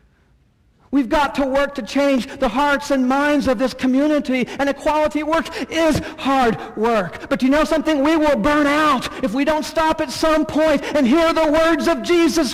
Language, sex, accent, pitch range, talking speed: English, male, American, 150-250 Hz, 190 wpm